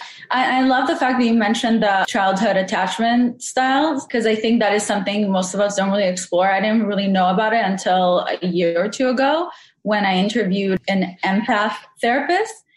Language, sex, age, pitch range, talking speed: English, female, 20-39, 180-215 Hz, 195 wpm